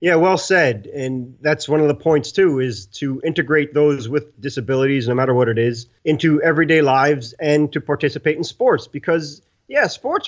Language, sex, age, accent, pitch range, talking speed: English, male, 30-49, American, 135-170 Hz, 185 wpm